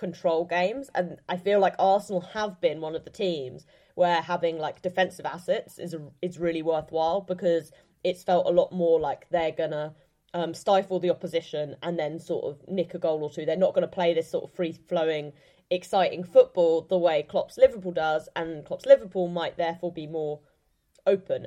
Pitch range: 160-190 Hz